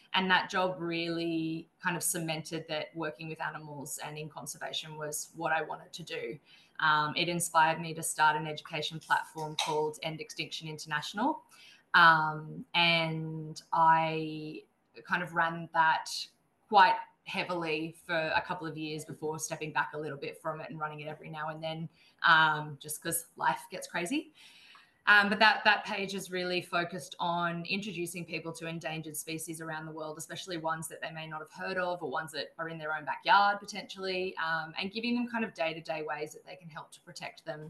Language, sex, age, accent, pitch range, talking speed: English, female, 20-39, Australian, 155-180 Hz, 190 wpm